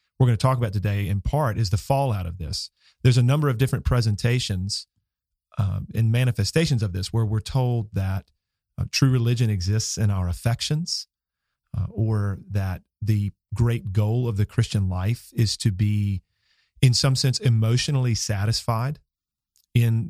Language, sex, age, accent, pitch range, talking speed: English, male, 40-59, American, 100-125 Hz, 160 wpm